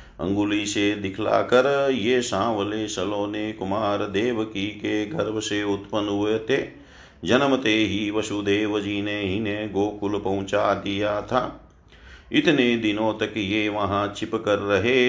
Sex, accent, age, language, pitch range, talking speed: male, native, 50-69, Hindi, 100-115 Hz, 70 wpm